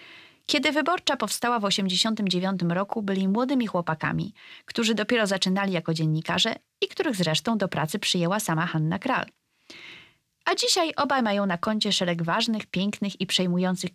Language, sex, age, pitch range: Polish, female, 20-39, 175-245 Hz